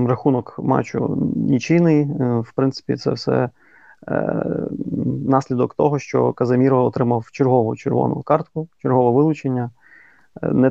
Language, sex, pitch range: Ukrainian, male, 120-145 Hz